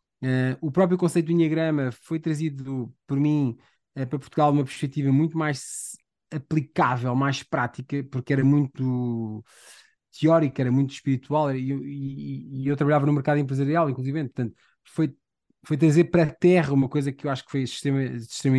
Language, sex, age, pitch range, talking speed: Portuguese, male, 20-39, 130-155 Hz, 175 wpm